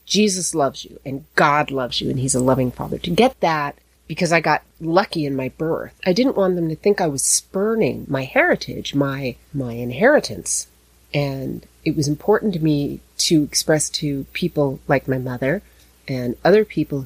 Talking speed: 185 wpm